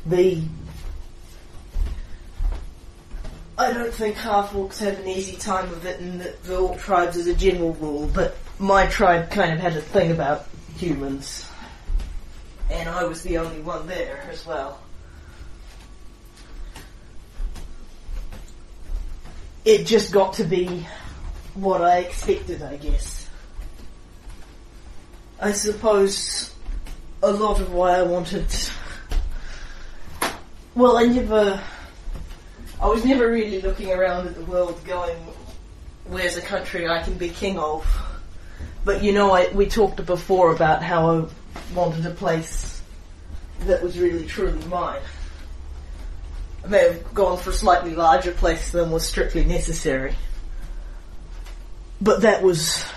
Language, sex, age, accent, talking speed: English, female, 30-49, Australian, 125 wpm